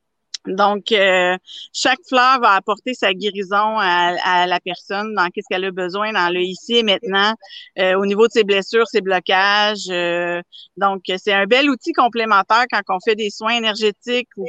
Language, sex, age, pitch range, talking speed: French, female, 40-59, 195-235 Hz, 180 wpm